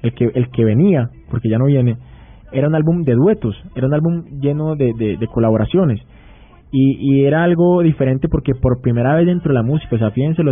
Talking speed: 220 wpm